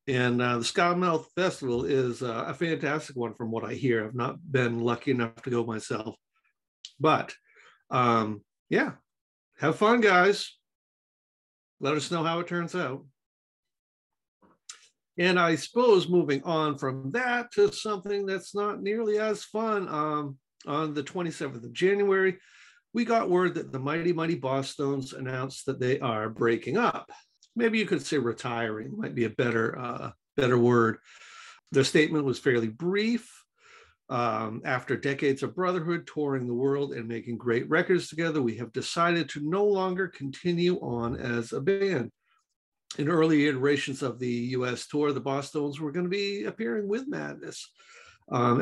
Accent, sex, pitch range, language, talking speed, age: American, male, 125-185 Hz, English, 155 wpm, 60-79